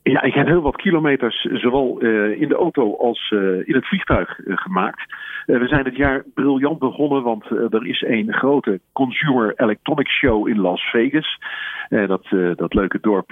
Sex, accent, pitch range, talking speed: male, Dutch, 95-130 Hz, 195 wpm